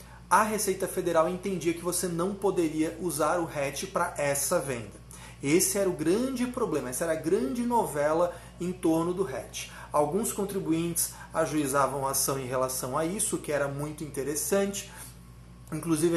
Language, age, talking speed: Portuguese, 30-49, 160 wpm